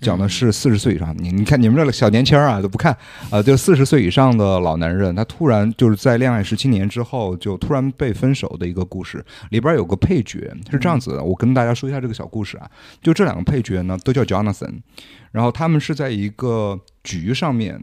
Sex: male